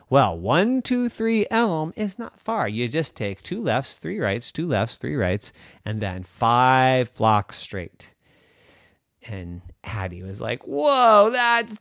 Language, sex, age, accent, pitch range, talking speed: English, male, 30-49, American, 105-170 Hz, 150 wpm